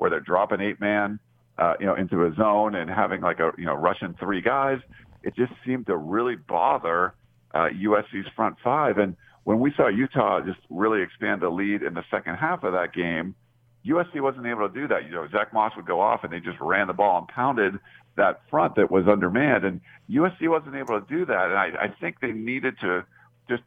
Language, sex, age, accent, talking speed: English, male, 50-69, American, 220 wpm